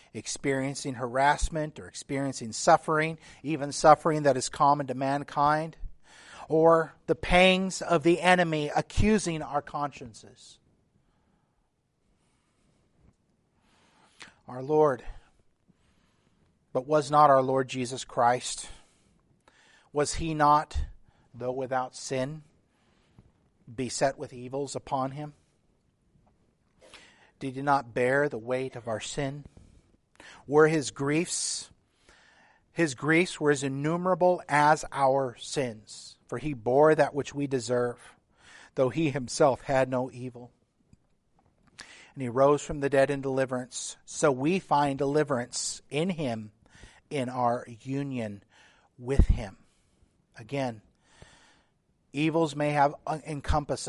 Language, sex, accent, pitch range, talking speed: English, male, American, 125-150 Hz, 110 wpm